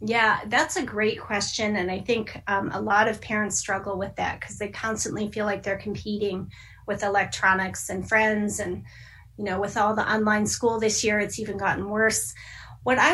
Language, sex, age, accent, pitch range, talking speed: English, female, 30-49, American, 205-240 Hz, 195 wpm